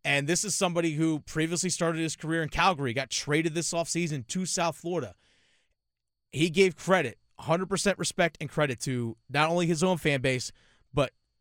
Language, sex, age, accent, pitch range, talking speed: English, male, 30-49, American, 135-195 Hz, 175 wpm